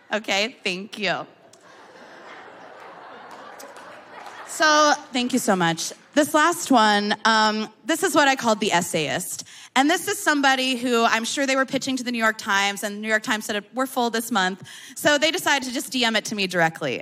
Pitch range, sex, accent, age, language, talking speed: 210-305 Hz, female, American, 20-39, English, 190 wpm